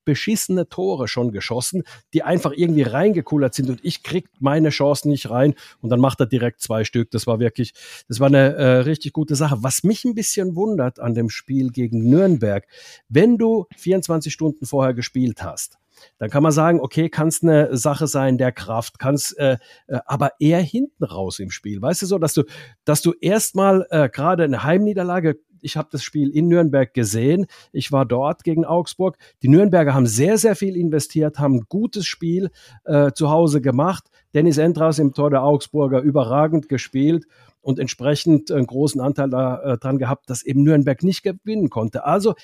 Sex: male